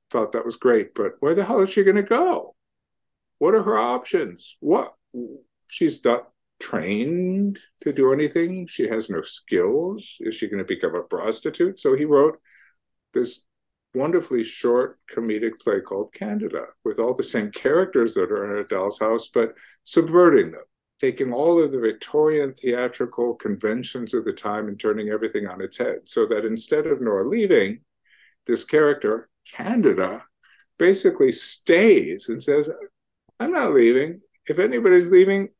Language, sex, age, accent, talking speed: English, male, 50-69, American, 160 wpm